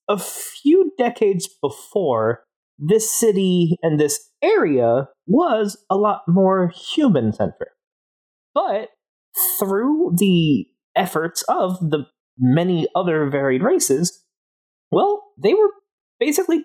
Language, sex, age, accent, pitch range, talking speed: English, male, 30-49, American, 150-255 Hz, 100 wpm